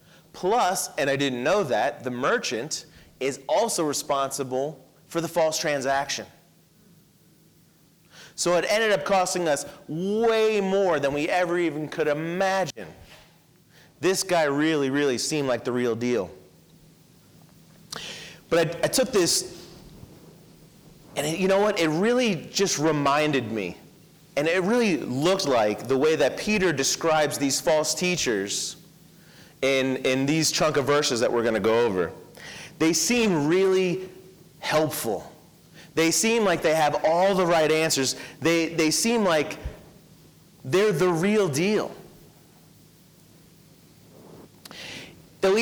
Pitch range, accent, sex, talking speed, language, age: 150-185 Hz, American, male, 130 wpm, English, 30-49